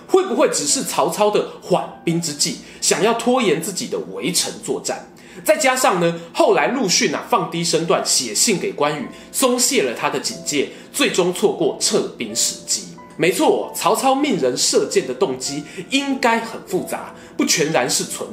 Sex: male